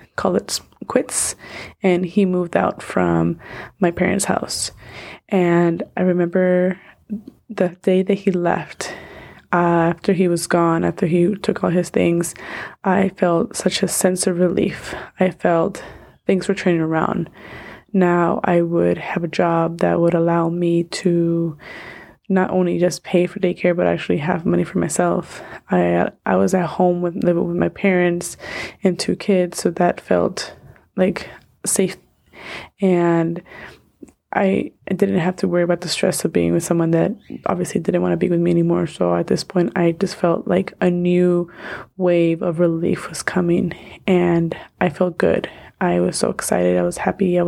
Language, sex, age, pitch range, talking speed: English, female, 20-39, 170-185 Hz, 170 wpm